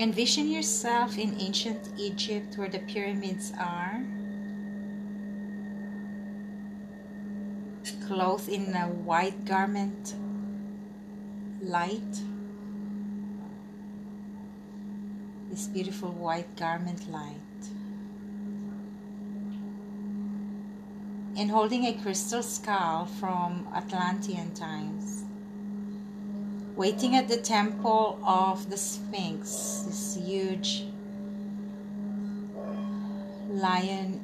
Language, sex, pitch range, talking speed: English, female, 195-205 Hz, 65 wpm